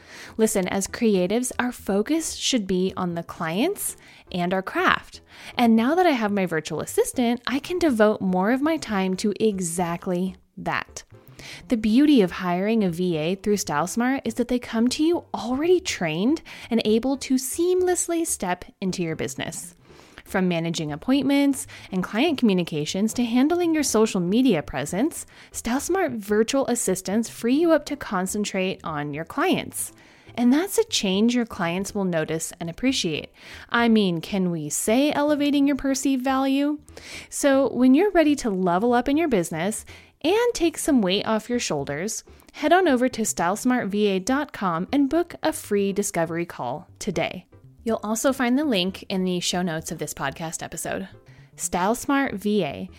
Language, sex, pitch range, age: English, female, 180-275 Hz, 20-39